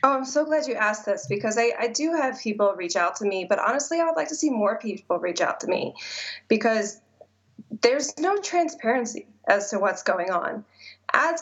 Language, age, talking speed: English, 20-39, 210 wpm